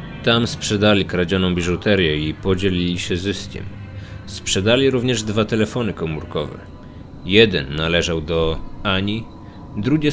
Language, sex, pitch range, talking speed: Polish, male, 90-115 Hz, 105 wpm